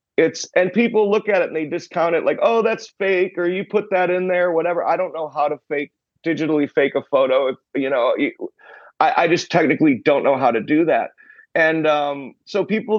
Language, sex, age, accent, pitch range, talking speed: English, male, 40-59, American, 150-190 Hz, 225 wpm